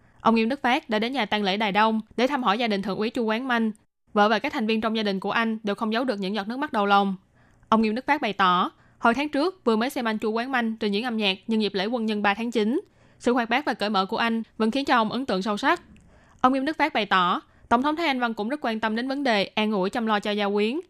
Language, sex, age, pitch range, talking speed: Vietnamese, female, 10-29, 210-245 Hz, 315 wpm